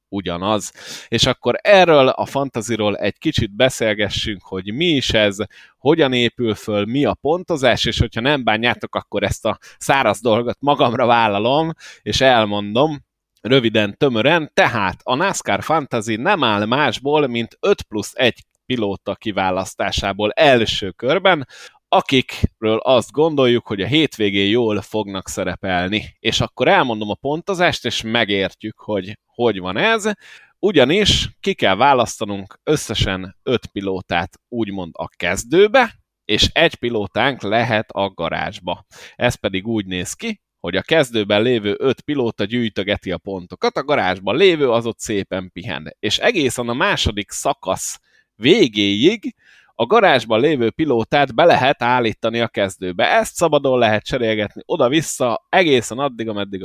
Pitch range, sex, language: 100-130 Hz, male, Hungarian